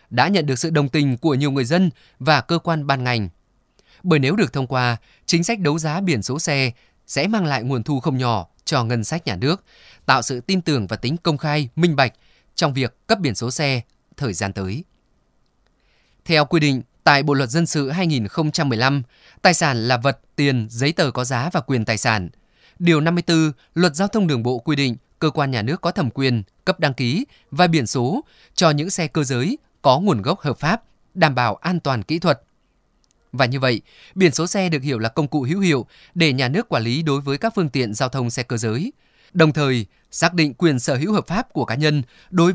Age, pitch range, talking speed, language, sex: 20-39, 125-165 Hz, 225 wpm, Vietnamese, male